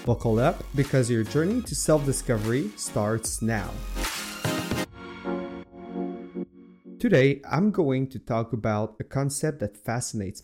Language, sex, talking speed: French, male, 110 wpm